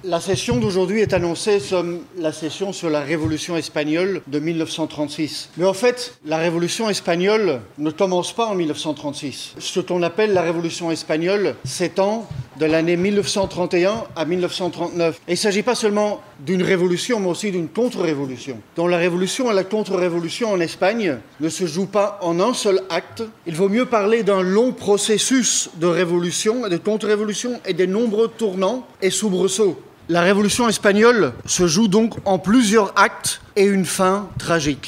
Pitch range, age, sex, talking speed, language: 170-205 Hz, 40-59, male, 160 wpm, French